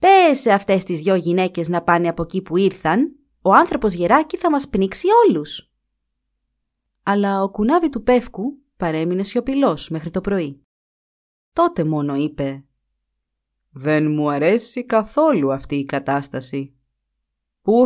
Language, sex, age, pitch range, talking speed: Greek, female, 30-49, 150-245 Hz, 130 wpm